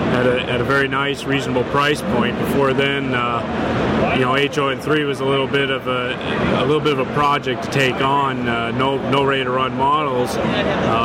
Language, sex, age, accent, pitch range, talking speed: English, male, 30-49, American, 130-145 Hz, 205 wpm